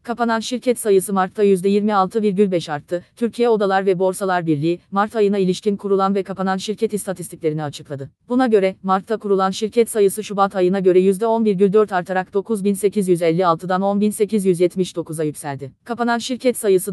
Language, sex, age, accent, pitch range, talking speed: Turkish, female, 30-49, native, 180-215 Hz, 130 wpm